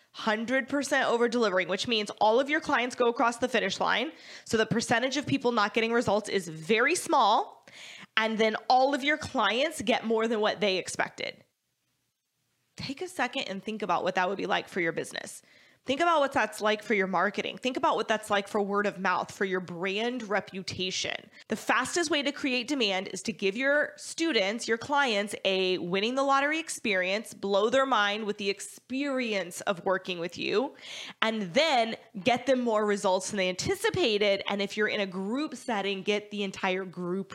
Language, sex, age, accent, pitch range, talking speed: English, female, 20-39, American, 200-265 Hz, 190 wpm